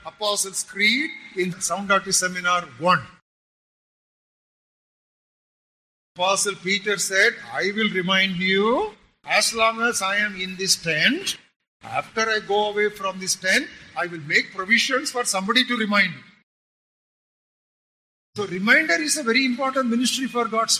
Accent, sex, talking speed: Indian, male, 135 wpm